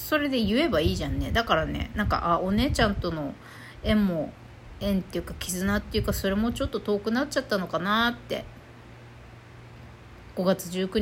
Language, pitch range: Japanese, 200-330 Hz